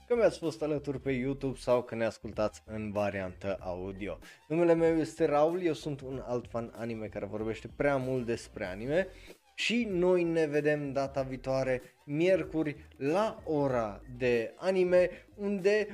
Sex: male